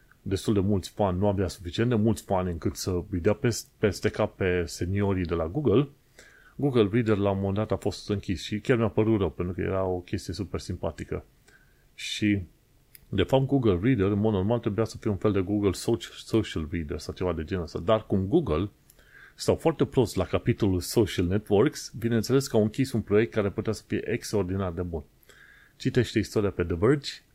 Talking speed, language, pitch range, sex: 200 wpm, Romanian, 95-115 Hz, male